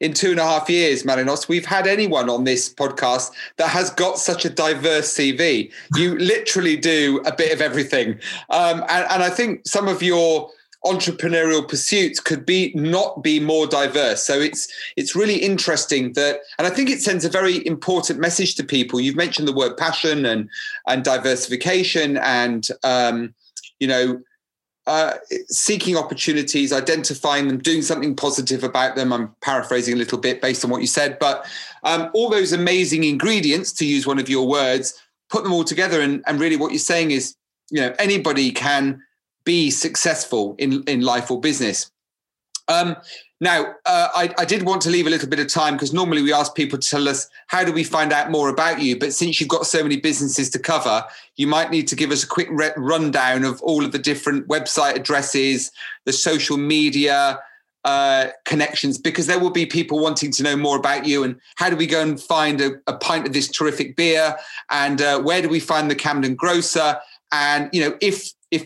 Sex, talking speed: male, 195 wpm